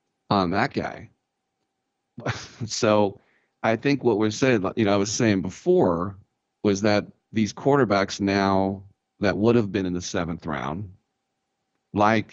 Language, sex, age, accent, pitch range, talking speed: English, male, 50-69, American, 90-110 Hz, 140 wpm